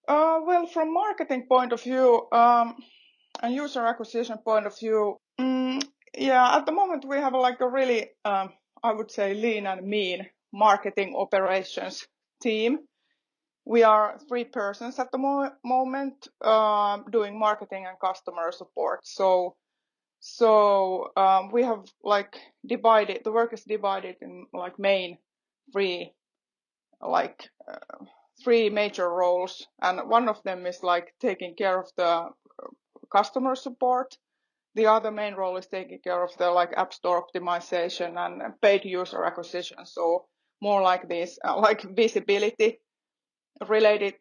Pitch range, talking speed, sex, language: 185-250 Hz, 145 wpm, female, Finnish